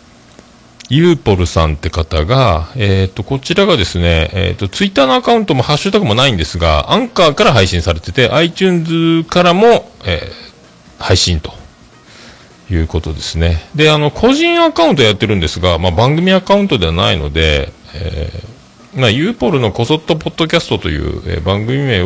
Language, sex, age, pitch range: Japanese, male, 40-59, 85-140 Hz